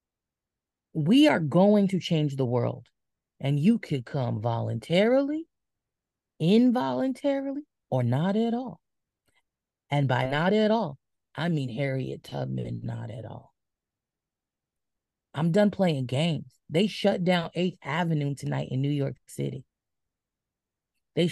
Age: 30-49